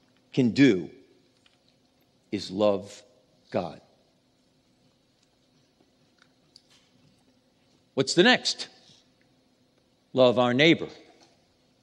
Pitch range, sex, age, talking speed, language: 125-170 Hz, male, 50-69, 55 wpm, English